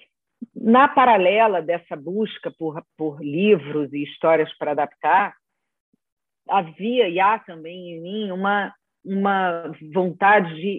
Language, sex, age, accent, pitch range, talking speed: Portuguese, female, 40-59, Brazilian, 165-215 Hz, 110 wpm